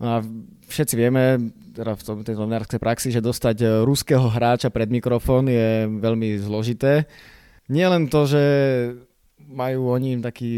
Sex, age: male, 20-39